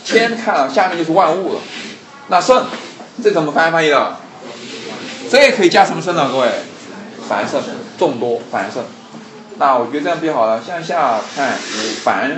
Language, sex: Chinese, male